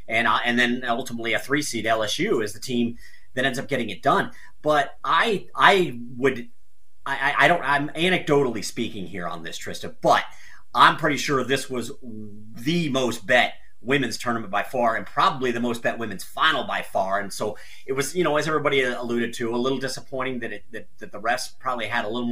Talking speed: 210 wpm